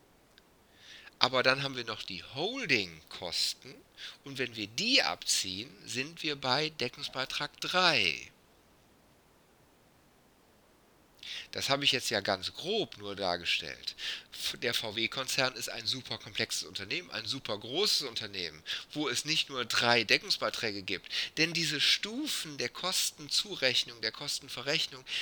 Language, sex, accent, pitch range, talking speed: German, male, German, 115-150 Hz, 120 wpm